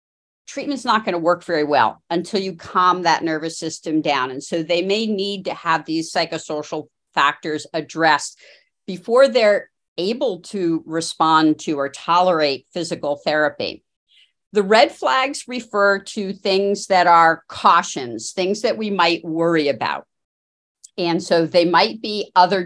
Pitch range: 160-205 Hz